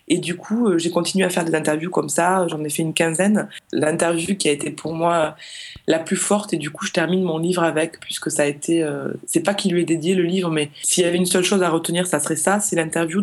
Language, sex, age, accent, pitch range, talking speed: French, female, 20-39, French, 155-185 Hz, 275 wpm